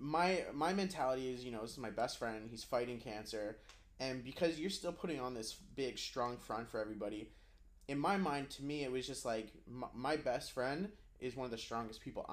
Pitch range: 110-135 Hz